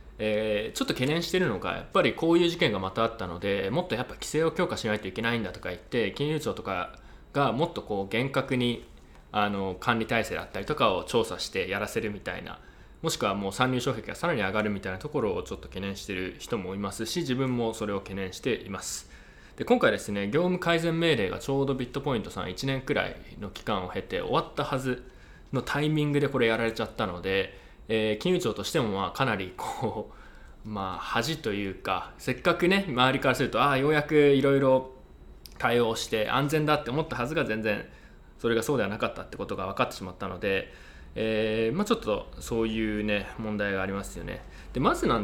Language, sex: Japanese, male